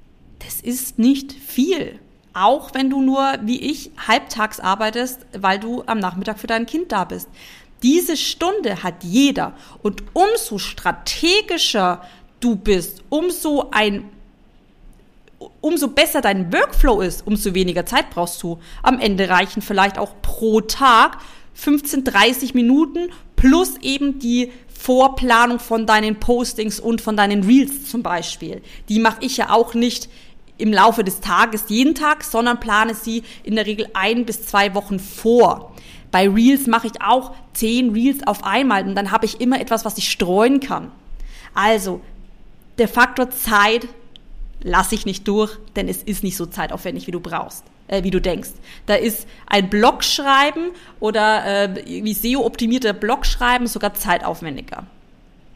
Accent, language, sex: German, German, female